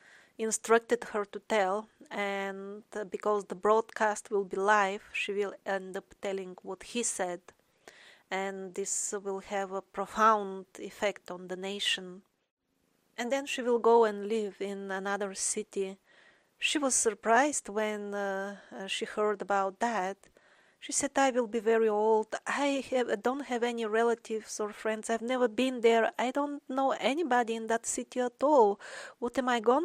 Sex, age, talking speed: female, 30-49, 160 wpm